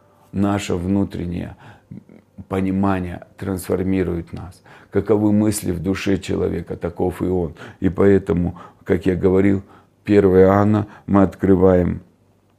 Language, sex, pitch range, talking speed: Russian, male, 95-105 Hz, 105 wpm